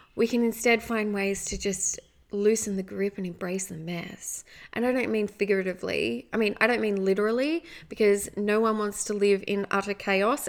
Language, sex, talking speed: English, female, 195 wpm